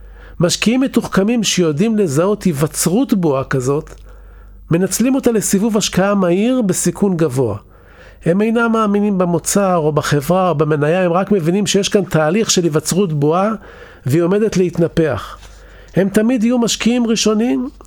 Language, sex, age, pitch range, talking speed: Hebrew, male, 50-69, 135-210 Hz, 130 wpm